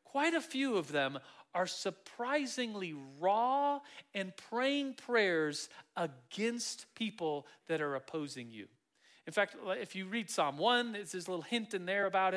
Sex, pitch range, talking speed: male, 165-245 Hz, 150 wpm